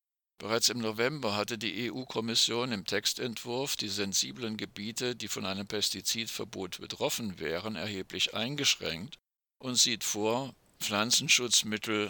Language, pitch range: German, 100-120 Hz